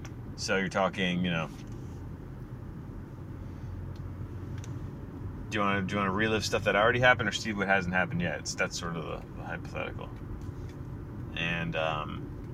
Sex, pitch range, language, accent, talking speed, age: male, 100-125 Hz, English, American, 140 wpm, 30-49